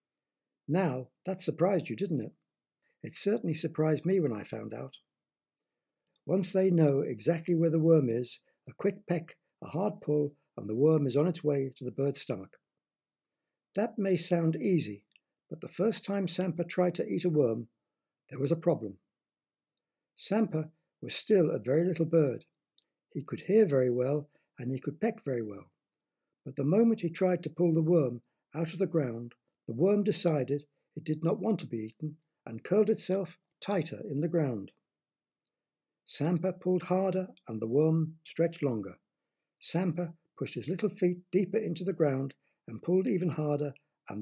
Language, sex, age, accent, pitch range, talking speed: English, male, 60-79, British, 140-185 Hz, 170 wpm